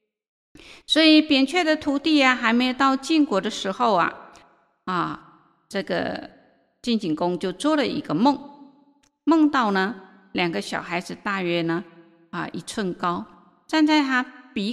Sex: female